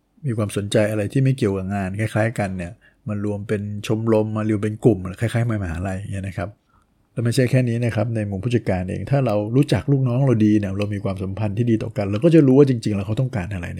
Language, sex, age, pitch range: Thai, male, 60-79, 100-120 Hz